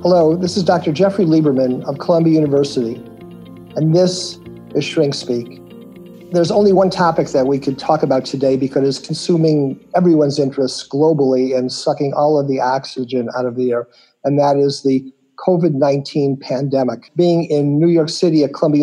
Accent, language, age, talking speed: American, English, 50-69, 170 wpm